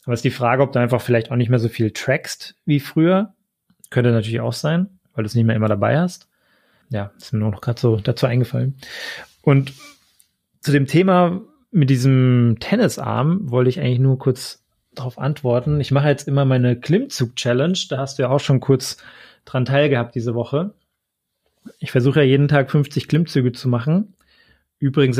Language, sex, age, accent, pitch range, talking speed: German, male, 30-49, German, 120-145 Hz, 190 wpm